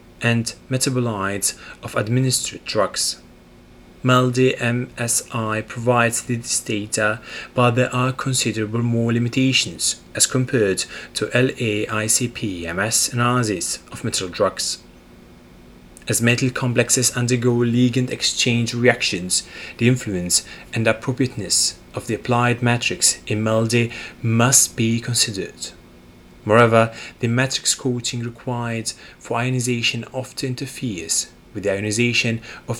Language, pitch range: English, 105-125 Hz